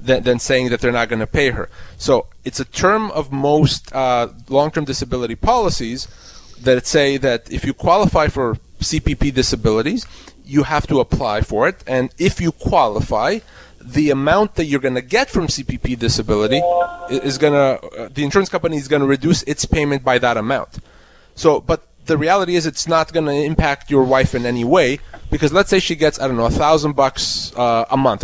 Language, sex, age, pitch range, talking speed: English, male, 30-49, 125-160 Hz, 195 wpm